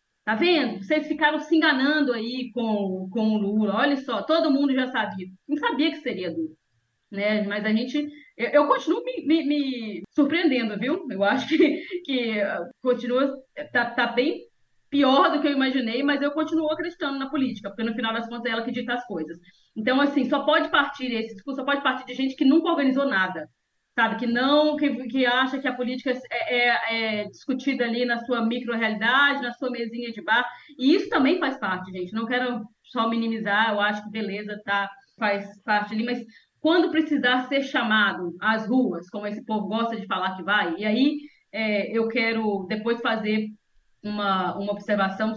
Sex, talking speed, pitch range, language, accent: female, 195 wpm, 215-280 Hz, Portuguese, Brazilian